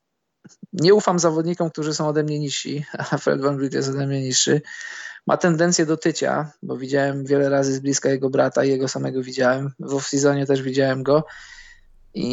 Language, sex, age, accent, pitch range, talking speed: Polish, male, 20-39, native, 135-155 Hz, 190 wpm